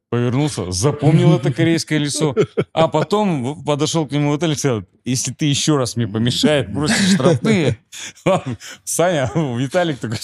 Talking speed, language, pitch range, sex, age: 140 wpm, Russian, 100-135 Hz, male, 30-49